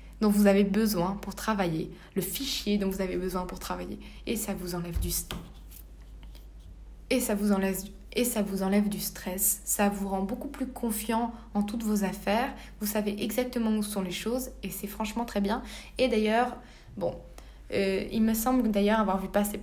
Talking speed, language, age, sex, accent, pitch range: 190 wpm, French, 20-39, female, French, 185-215 Hz